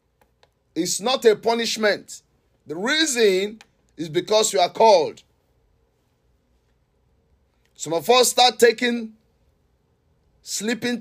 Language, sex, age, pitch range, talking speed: English, male, 50-69, 160-260 Hz, 95 wpm